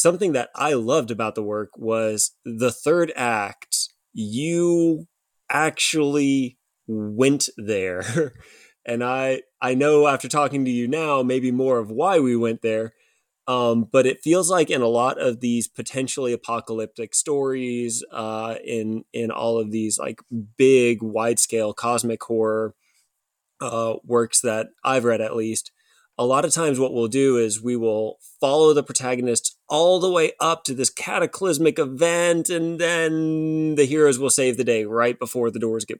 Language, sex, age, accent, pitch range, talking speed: English, male, 20-39, American, 115-160 Hz, 160 wpm